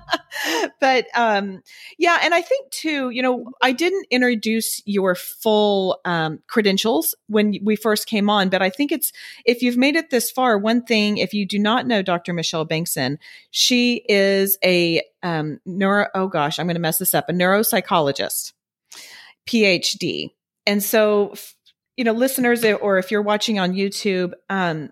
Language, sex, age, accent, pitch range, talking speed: English, female, 40-59, American, 170-225 Hz, 165 wpm